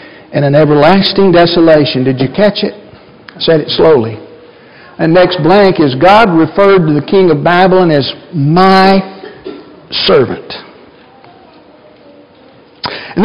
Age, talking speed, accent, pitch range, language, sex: 60-79, 120 wpm, American, 175-240 Hz, English, male